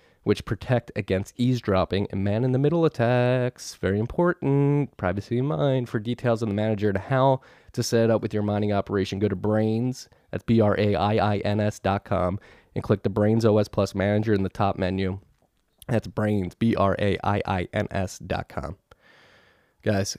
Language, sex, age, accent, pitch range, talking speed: English, male, 20-39, American, 90-105 Hz, 150 wpm